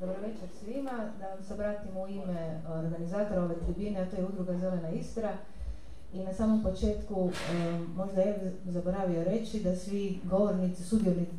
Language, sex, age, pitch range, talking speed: Croatian, female, 30-49, 175-205 Hz, 160 wpm